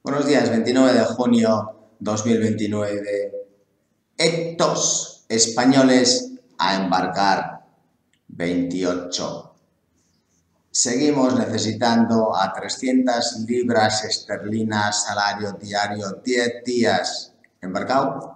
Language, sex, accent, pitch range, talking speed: English, male, Spanish, 95-115 Hz, 70 wpm